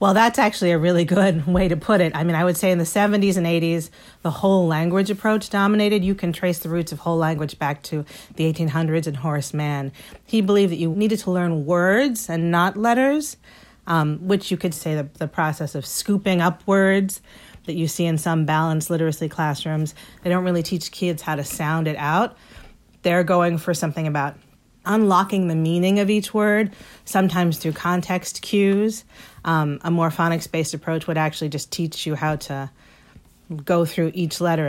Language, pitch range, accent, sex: English, 160-195 Hz, American, female